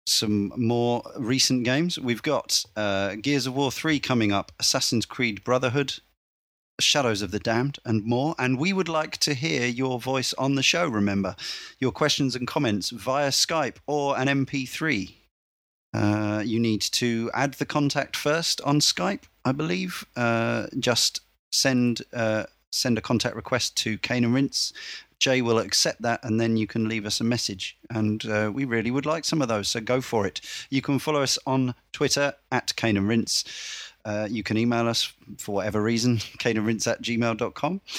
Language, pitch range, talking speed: English, 110-140 Hz, 175 wpm